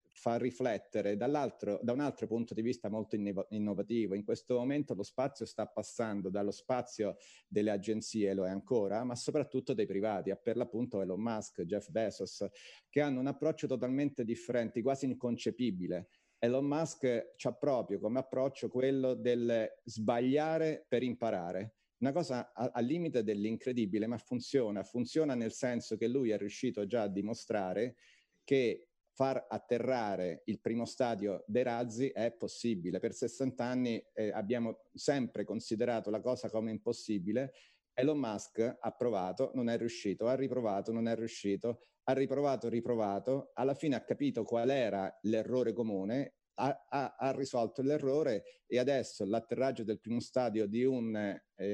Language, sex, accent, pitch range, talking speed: Italian, male, native, 110-130 Hz, 150 wpm